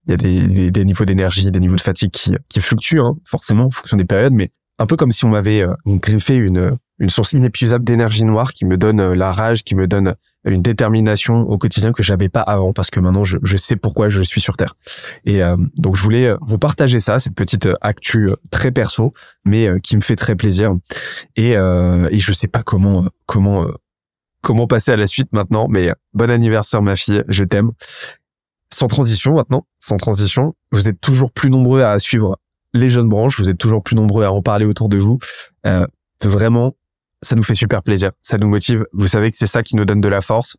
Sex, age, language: male, 20-39, French